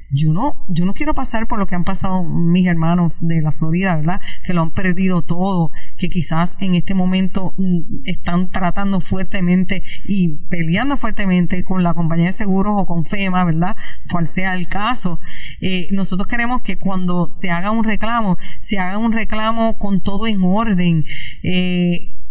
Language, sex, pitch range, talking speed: Spanish, female, 170-205 Hz, 170 wpm